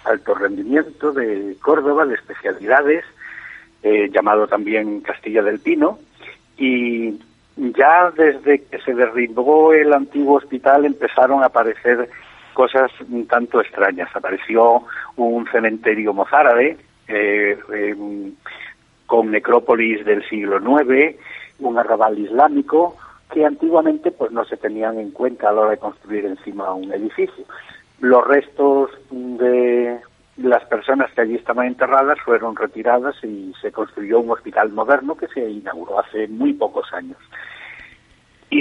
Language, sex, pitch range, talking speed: Spanish, male, 110-140 Hz, 130 wpm